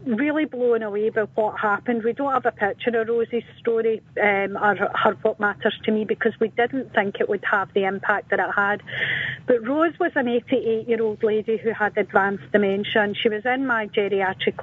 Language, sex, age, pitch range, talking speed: English, female, 40-59, 205-235 Hz, 200 wpm